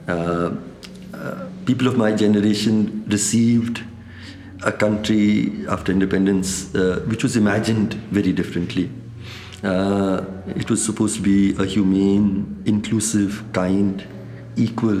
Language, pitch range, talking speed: English, 95-115 Hz, 110 wpm